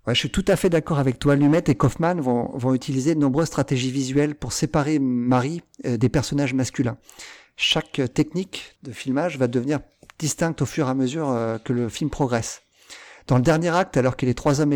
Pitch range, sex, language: 130-165 Hz, male, French